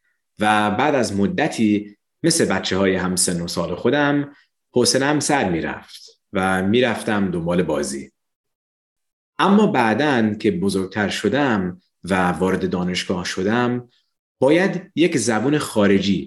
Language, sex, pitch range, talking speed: Persian, male, 95-145 Hz, 120 wpm